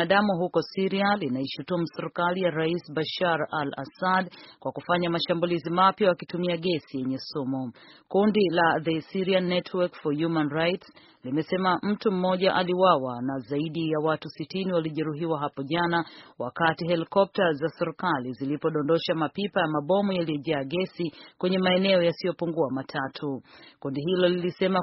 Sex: female